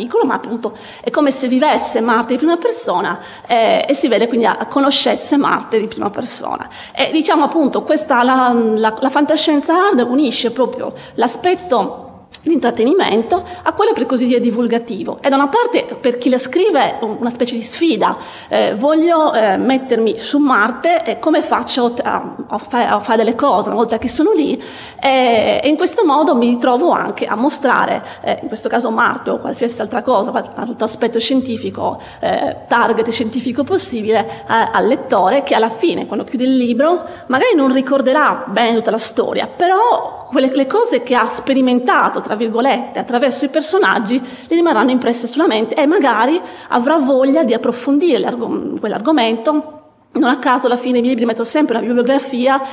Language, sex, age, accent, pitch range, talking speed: Italian, female, 30-49, native, 235-305 Hz, 175 wpm